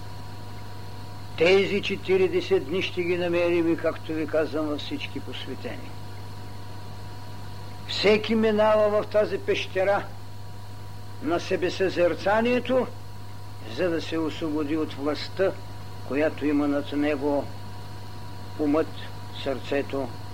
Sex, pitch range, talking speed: male, 105-170 Hz, 95 wpm